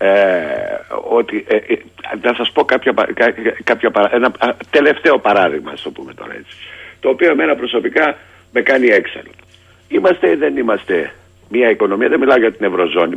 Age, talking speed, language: 60-79, 145 wpm, Greek